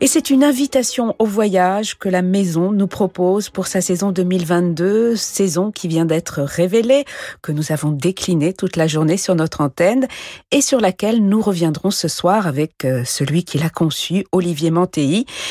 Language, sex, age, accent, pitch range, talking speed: French, female, 50-69, French, 155-210 Hz, 170 wpm